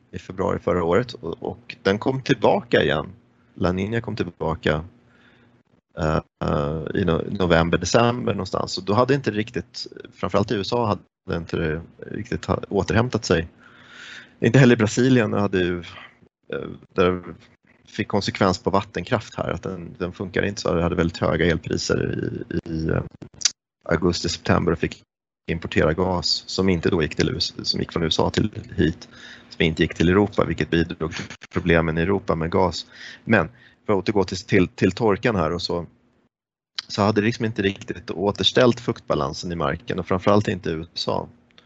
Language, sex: Swedish, male